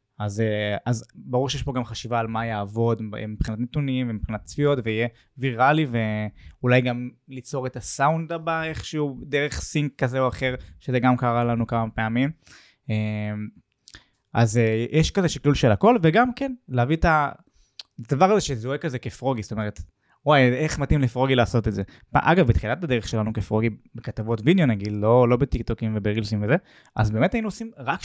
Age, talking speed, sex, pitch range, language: 20-39, 165 wpm, male, 115-150 Hz, Hebrew